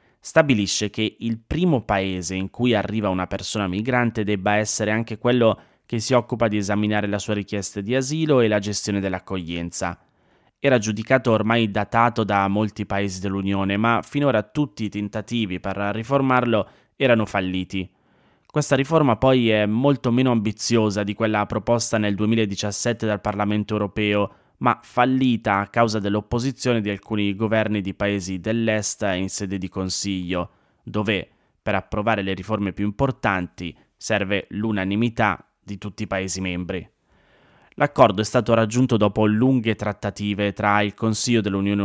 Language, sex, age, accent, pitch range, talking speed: Italian, male, 20-39, native, 100-115 Hz, 145 wpm